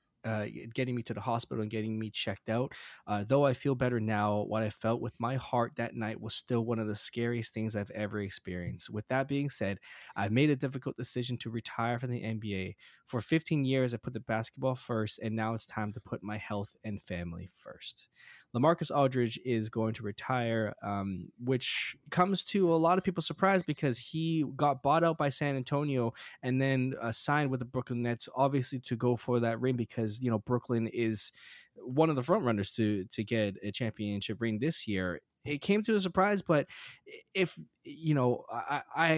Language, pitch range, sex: English, 110-140 Hz, male